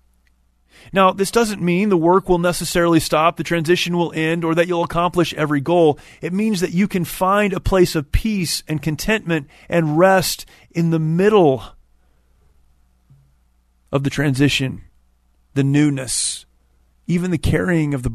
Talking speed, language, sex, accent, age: 150 wpm, English, male, American, 30-49